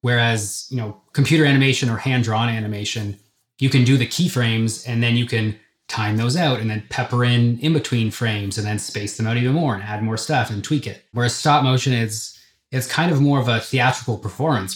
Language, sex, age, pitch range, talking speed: English, male, 20-39, 110-130 Hz, 220 wpm